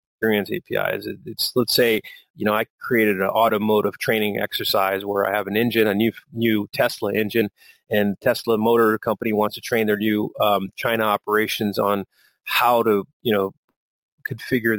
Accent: American